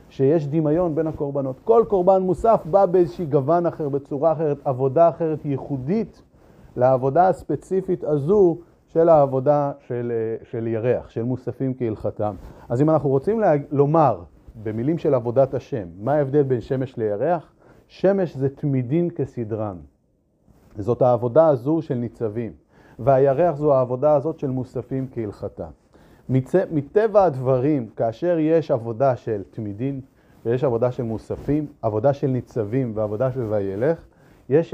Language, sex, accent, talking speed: Hebrew, male, native, 130 wpm